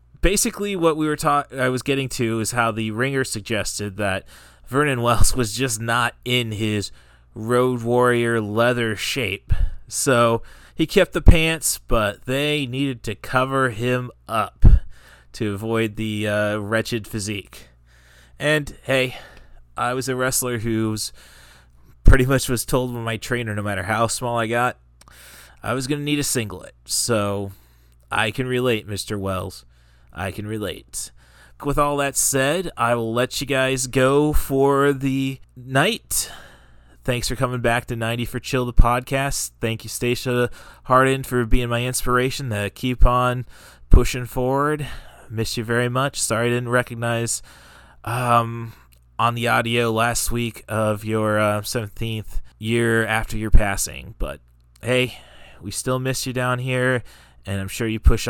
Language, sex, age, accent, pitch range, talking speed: English, male, 30-49, American, 105-130 Hz, 155 wpm